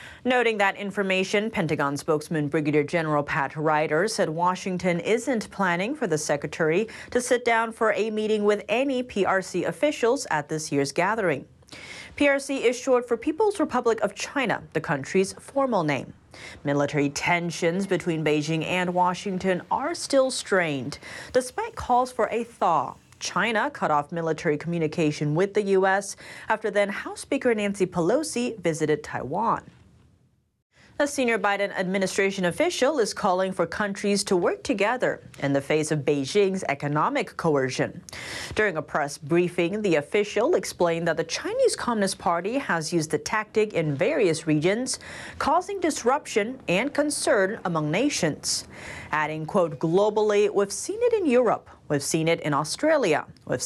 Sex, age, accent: female, 30-49, American